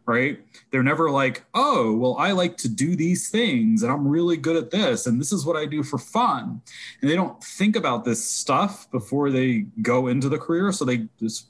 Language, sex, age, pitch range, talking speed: English, male, 20-39, 115-180 Hz, 220 wpm